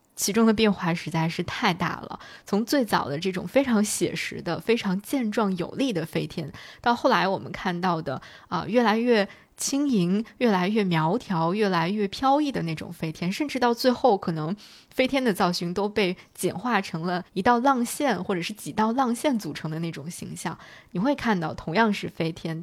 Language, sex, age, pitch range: Chinese, female, 20-39, 175-230 Hz